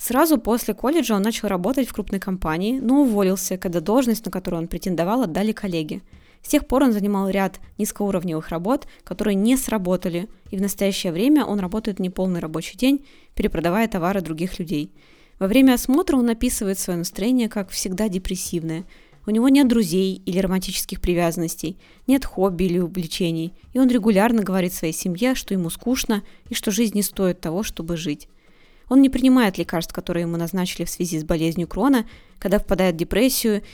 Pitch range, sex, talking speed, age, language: 180-230 Hz, female, 175 wpm, 20-39, Russian